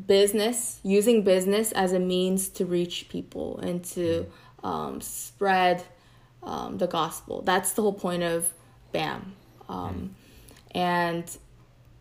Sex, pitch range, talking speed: female, 165-205 Hz, 120 wpm